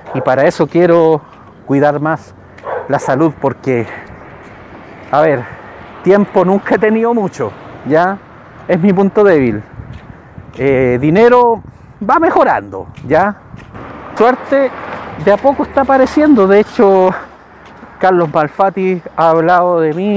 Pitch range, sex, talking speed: 145-200 Hz, male, 120 wpm